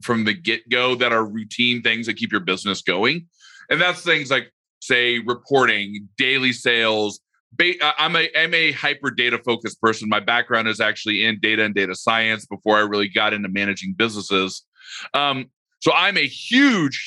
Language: English